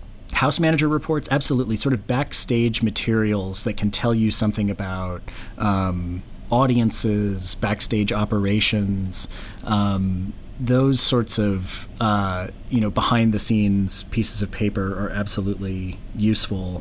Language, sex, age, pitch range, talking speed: English, male, 30-49, 100-115 Hz, 120 wpm